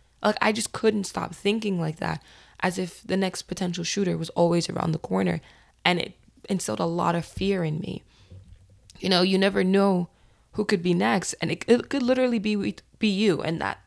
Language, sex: English, female